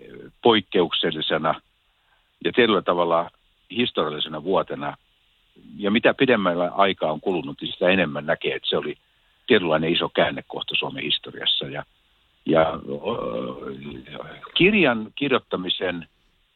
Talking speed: 100 wpm